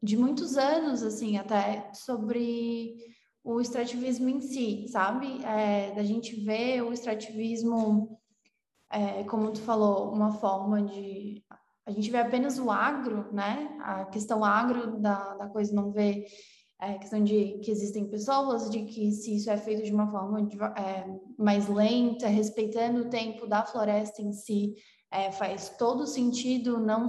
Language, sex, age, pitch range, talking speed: Portuguese, female, 10-29, 210-235 Hz, 155 wpm